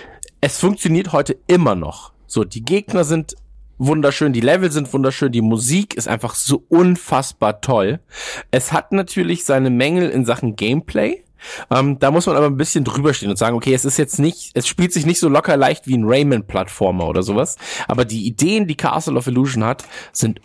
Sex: male